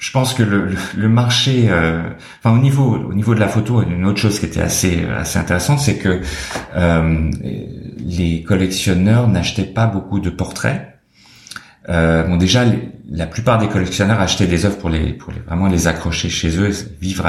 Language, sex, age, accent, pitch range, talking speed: French, male, 40-59, French, 85-110 Hz, 185 wpm